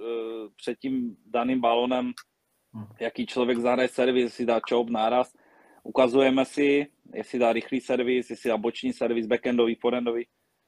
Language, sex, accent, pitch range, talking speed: Czech, male, native, 120-140 Hz, 135 wpm